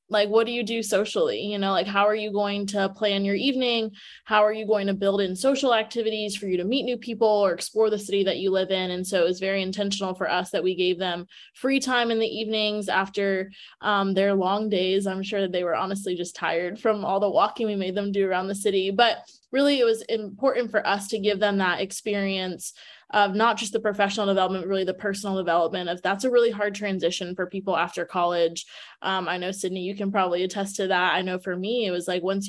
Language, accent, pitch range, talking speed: English, American, 185-210 Hz, 240 wpm